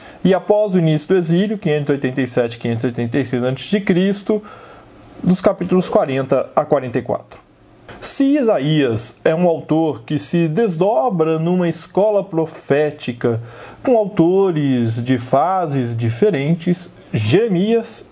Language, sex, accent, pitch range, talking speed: Portuguese, male, Brazilian, 145-220 Hz, 100 wpm